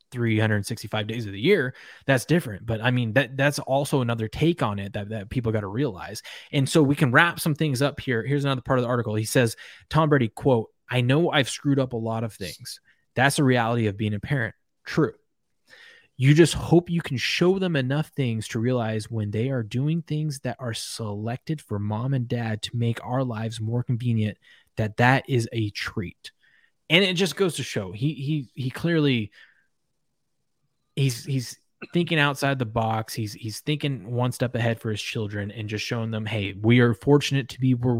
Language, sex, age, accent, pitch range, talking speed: English, male, 20-39, American, 110-135 Hz, 205 wpm